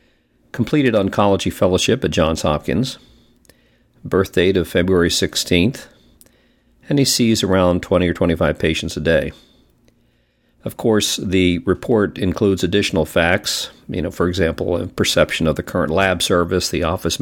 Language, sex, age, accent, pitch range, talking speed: English, male, 50-69, American, 85-100 Hz, 145 wpm